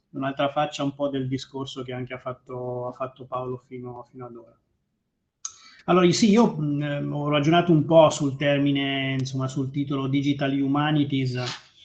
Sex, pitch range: male, 130-145 Hz